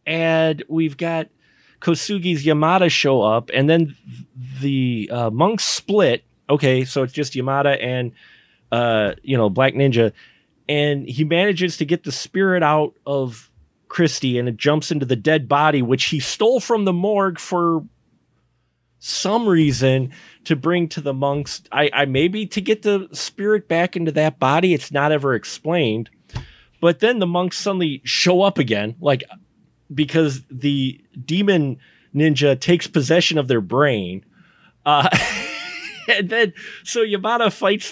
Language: English